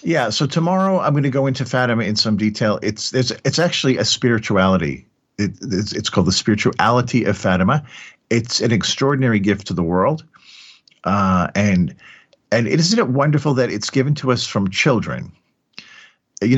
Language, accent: English, American